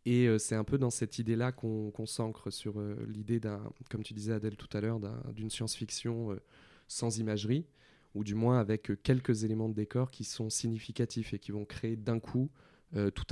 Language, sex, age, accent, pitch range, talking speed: French, male, 20-39, French, 105-120 Hz, 210 wpm